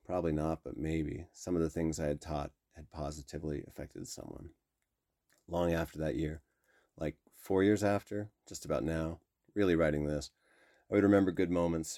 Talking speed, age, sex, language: 170 wpm, 30-49, male, English